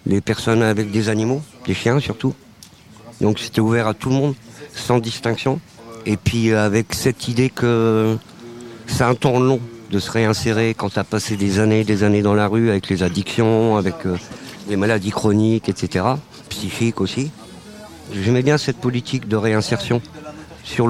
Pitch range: 100-120 Hz